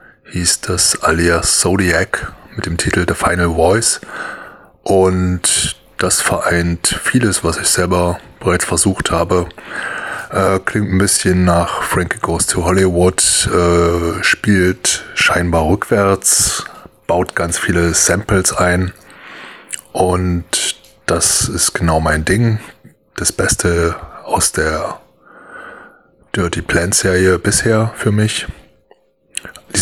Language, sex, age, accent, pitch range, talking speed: English, male, 20-39, German, 85-95 Hz, 110 wpm